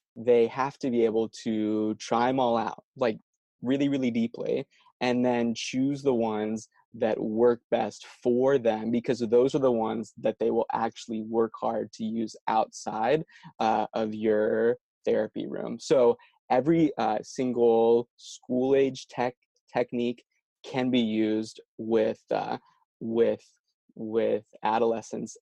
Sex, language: male, English